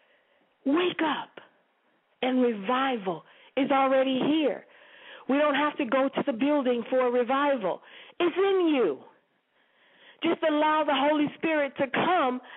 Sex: female